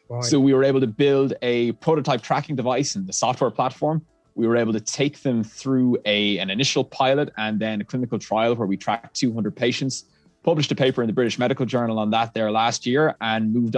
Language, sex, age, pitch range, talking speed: English, male, 20-39, 105-130 Hz, 220 wpm